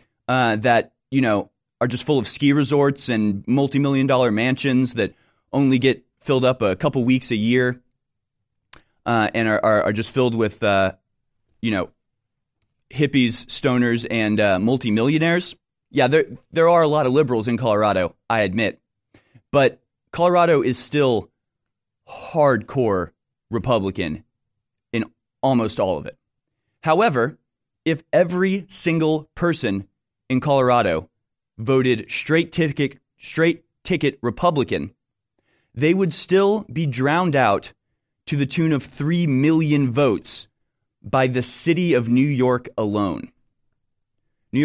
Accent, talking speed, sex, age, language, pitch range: American, 130 wpm, male, 30-49, English, 115-150 Hz